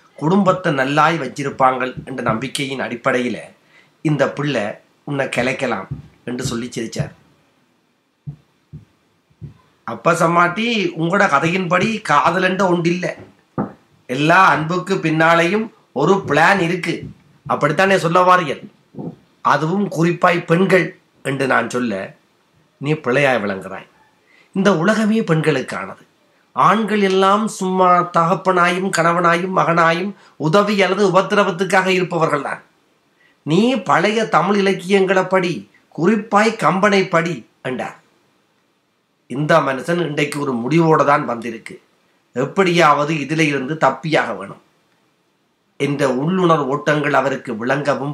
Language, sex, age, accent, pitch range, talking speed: Tamil, male, 30-49, native, 150-185 Hz, 95 wpm